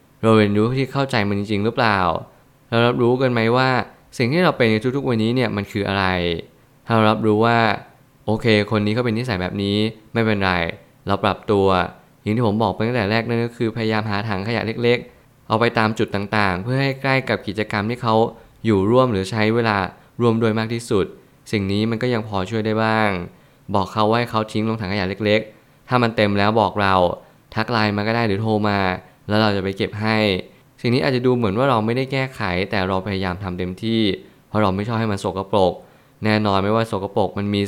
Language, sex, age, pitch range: Thai, male, 20-39, 100-120 Hz